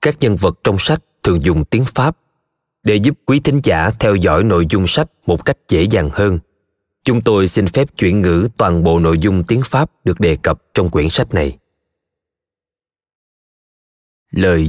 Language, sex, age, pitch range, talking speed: Vietnamese, male, 20-39, 90-120 Hz, 180 wpm